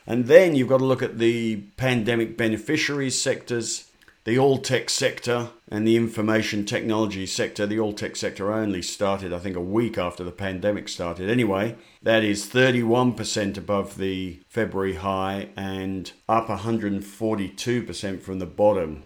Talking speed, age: 150 wpm, 50-69